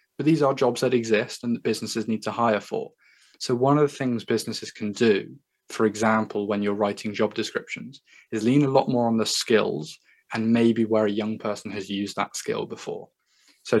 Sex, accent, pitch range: male, British, 105-120 Hz